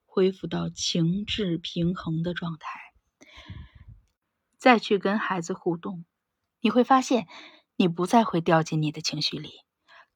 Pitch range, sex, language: 170-245 Hz, female, Chinese